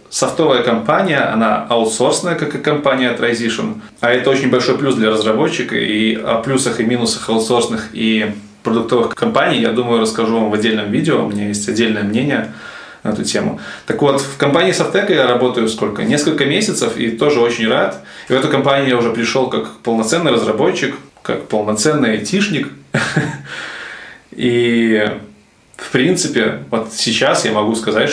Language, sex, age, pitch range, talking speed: Russian, male, 20-39, 110-130 Hz, 160 wpm